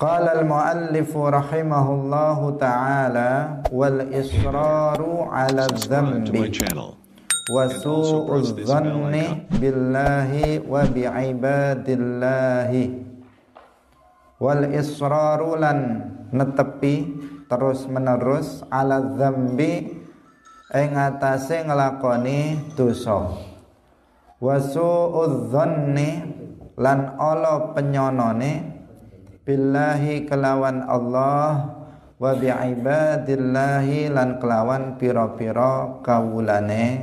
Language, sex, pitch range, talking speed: Indonesian, male, 125-150 Hz, 40 wpm